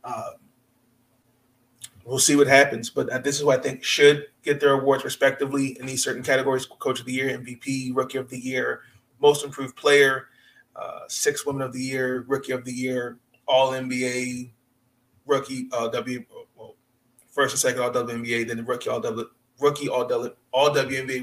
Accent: American